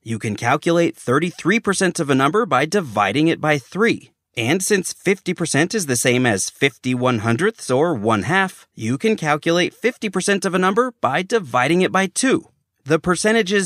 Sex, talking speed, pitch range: male, 170 wpm, 135-190 Hz